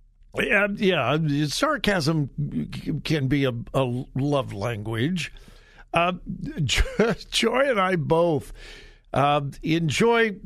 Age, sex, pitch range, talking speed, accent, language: 60-79, male, 145-195 Hz, 100 wpm, American, English